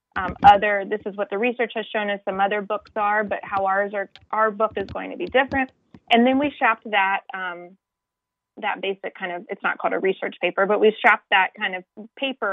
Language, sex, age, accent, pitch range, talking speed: English, female, 20-39, American, 195-240 Hz, 230 wpm